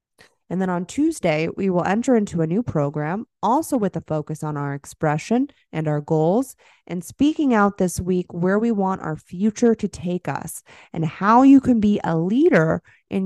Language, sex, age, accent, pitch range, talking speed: English, female, 20-39, American, 160-205 Hz, 190 wpm